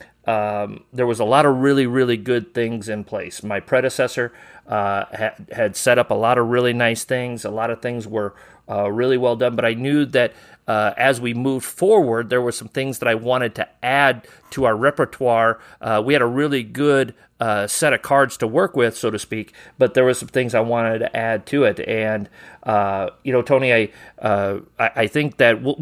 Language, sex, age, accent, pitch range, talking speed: English, male, 40-59, American, 115-135 Hz, 215 wpm